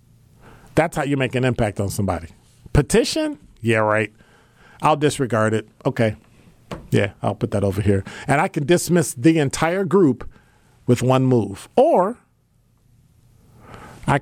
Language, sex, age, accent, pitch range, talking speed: English, male, 50-69, American, 110-140 Hz, 140 wpm